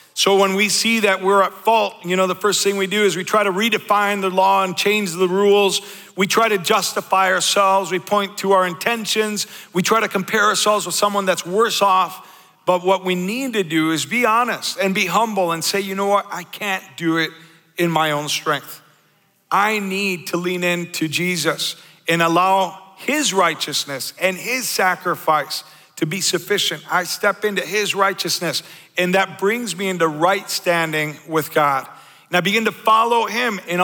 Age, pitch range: 50-69, 175-205 Hz